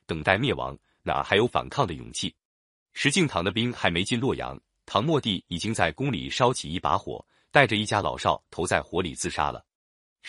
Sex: male